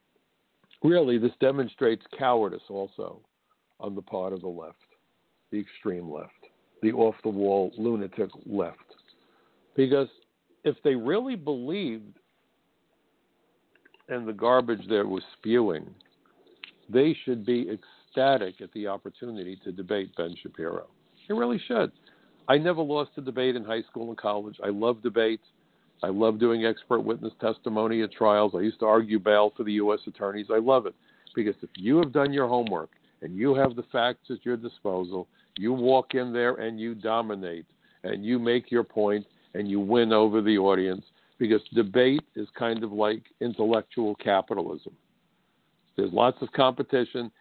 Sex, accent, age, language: male, American, 60-79, English